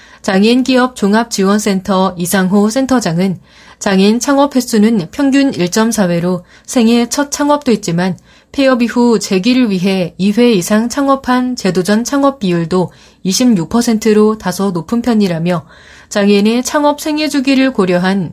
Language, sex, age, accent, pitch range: Korean, female, 30-49, native, 180-245 Hz